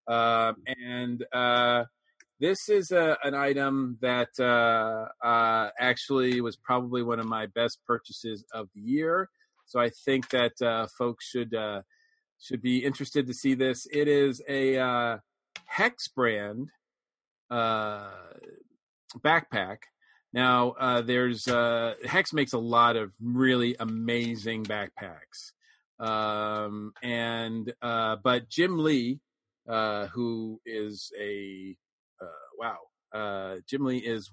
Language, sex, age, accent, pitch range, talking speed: English, male, 40-59, American, 110-135 Hz, 125 wpm